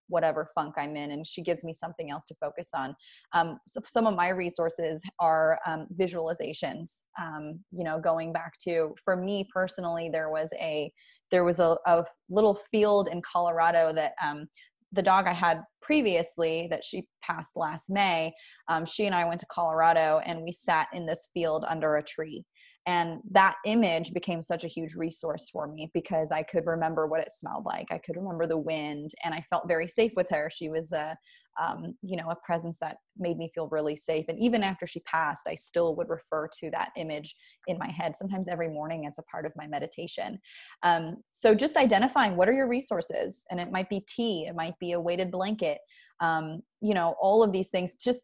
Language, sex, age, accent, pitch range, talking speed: English, female, 20-39, American, 160-190 Hz, 205 wpm